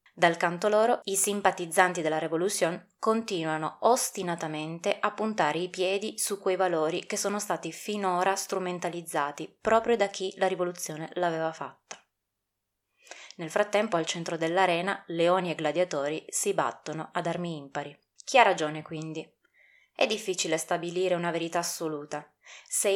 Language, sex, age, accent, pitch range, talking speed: Italian, female, 20-39, native, 160-200 Hz, 135 wpm